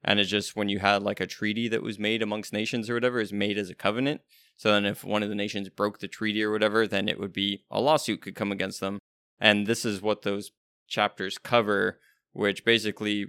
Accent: American